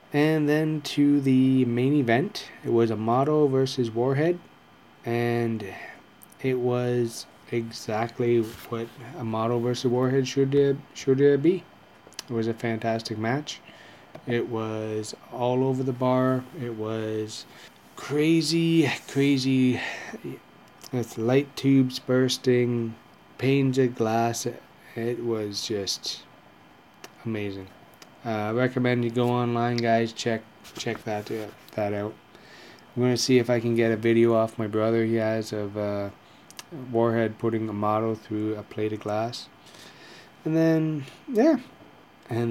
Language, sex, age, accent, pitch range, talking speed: English, male, 20-39, American, 115-130 Hz, 130 wpm